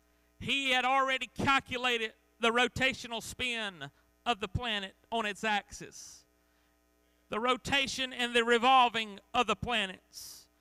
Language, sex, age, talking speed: English, male, 40-59, 120 wpm